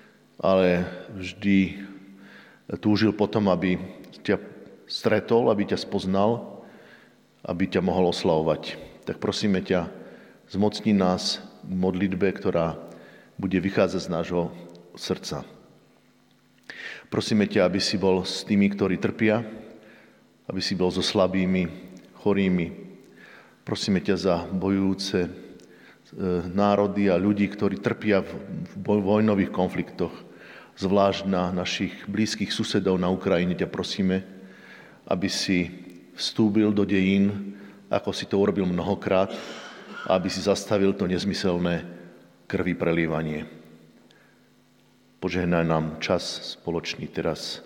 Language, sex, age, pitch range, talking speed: Slovak, male, 50-69, 90-100 Hz, 105 wpm